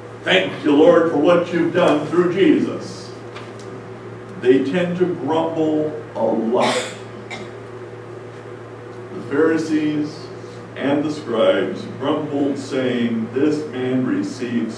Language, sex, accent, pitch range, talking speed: English, male, American, 120-140 Hz, 100 wpm